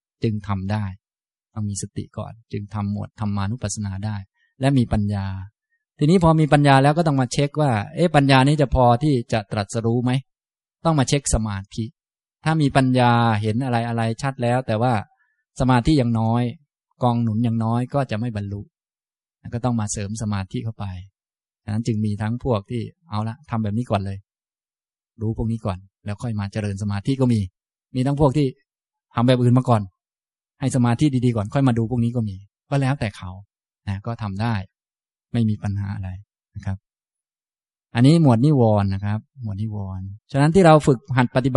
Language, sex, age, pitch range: Thai, male, 20-39, 105-130 Hz